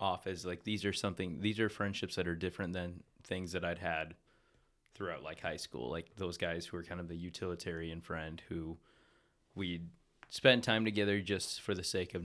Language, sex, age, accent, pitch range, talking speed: English, male, 20-39, American, 85-105 Hz, 200 wpm